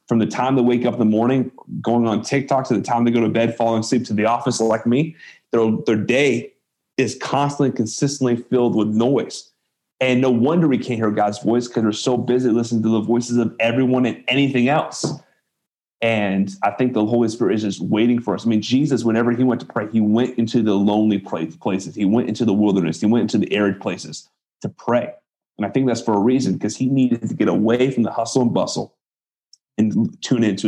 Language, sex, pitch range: English, male, 110-125 Hz